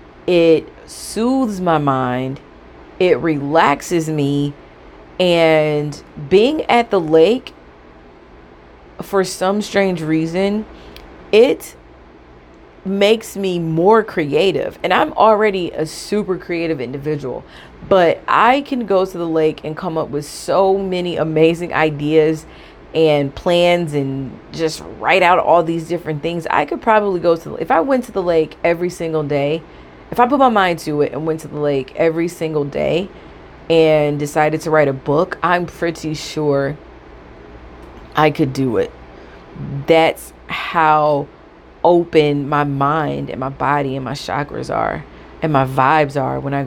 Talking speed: 145 wpm